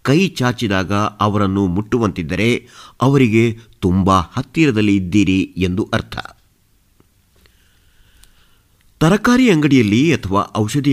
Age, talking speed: 50-69, 75 wpm